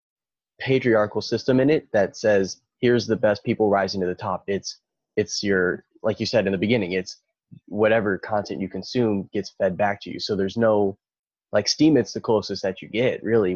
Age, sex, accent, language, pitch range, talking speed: 20-39, male, American, English, 95-105 Hz, 200 wpm